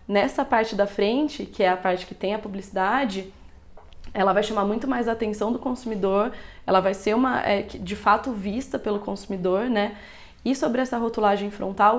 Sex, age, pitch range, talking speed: female, 20-39, 195-235 Hz, 180 wpm